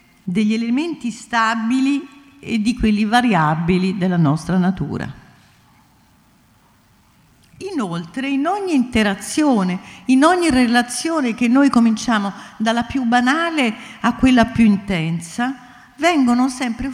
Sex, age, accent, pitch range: female, 50-69, native, 195-270 Hz